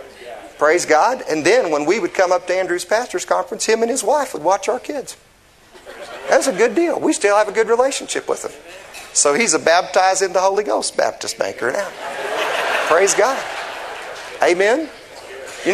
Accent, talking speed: American, 185 wpm